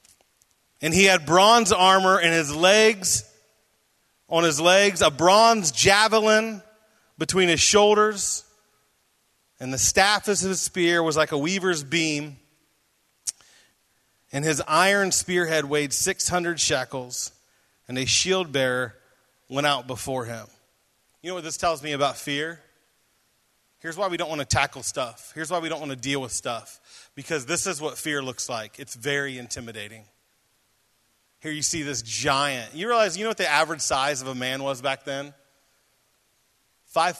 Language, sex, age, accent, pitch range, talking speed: English, male, 30-49, American, 130-205 Hz, 160 wpm